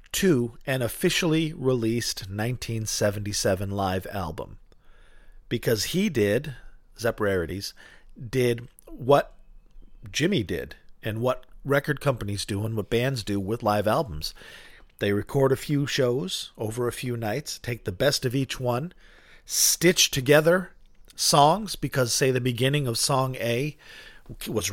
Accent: American